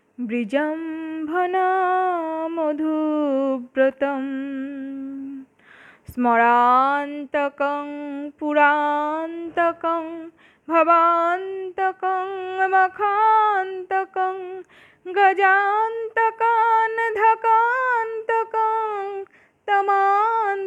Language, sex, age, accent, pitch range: Bengali, female, 20-39, native, 335-390 Hz